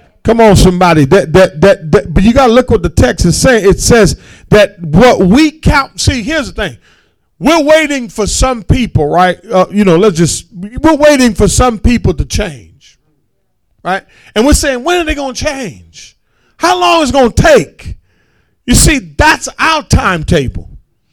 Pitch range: 185-285 Hz